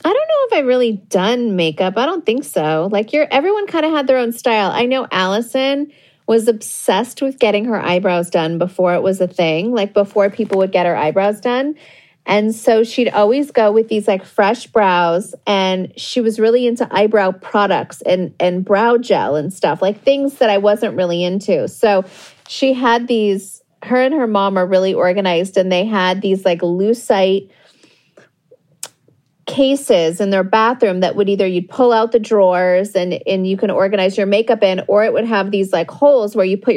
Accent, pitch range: American, 185-235 Hz